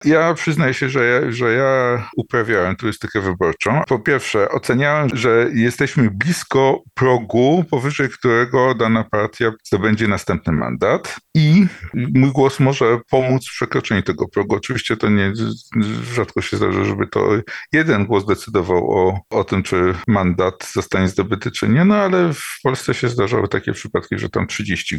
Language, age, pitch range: Polish, 50-69, 100-130 Hz